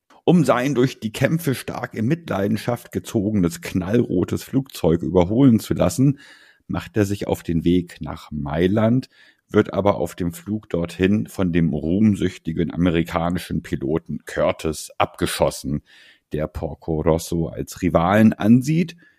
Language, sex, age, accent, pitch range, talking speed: German, male, 50-69, German, 85-115 Hz, 130 wpm